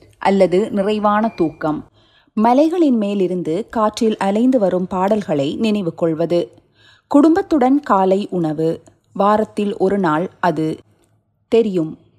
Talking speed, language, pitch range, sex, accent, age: 90 wpm, Tamil, 165-230 Hz, female, native, 30-49